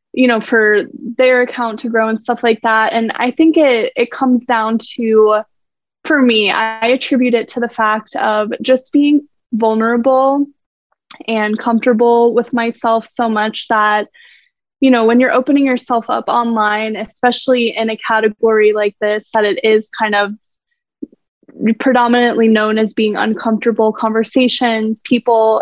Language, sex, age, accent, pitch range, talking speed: English, female, 10-29, American, 220-250 Hz, 150 wpm